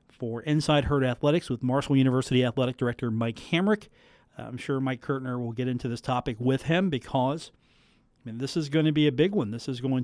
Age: 40-59